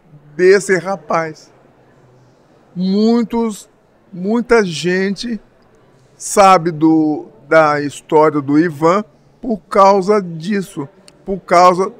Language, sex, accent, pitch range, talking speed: Portuguese, male, Brazilian, 165-205 Hz, 75 wpm